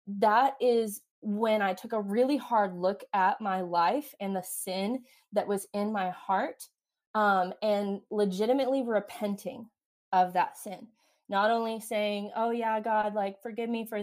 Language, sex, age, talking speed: English, female, 20-39, 160 wpm